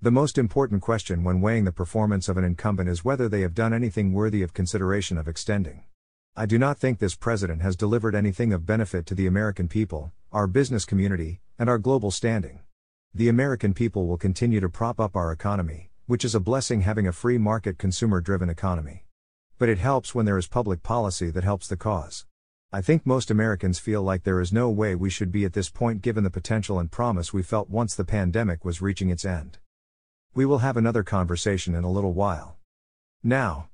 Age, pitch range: 40-59, 90-115 Hz